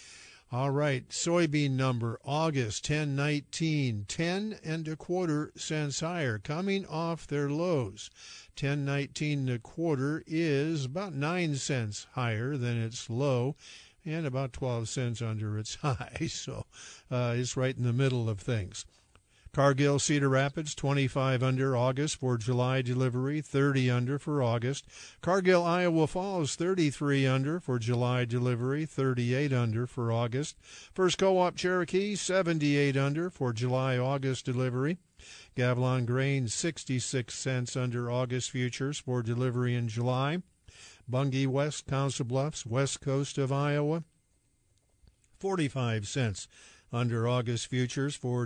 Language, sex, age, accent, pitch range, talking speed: English, male, 50-69, American, 125-150 Hz, 125 wpm